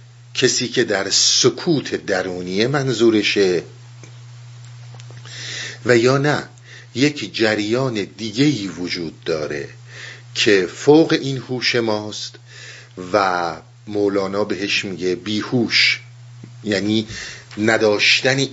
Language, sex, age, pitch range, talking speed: Persian, male, 50-69, 100-120 Hz, 85 wpm